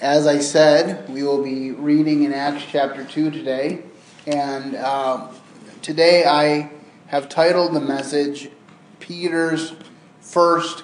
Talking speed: 120 wpm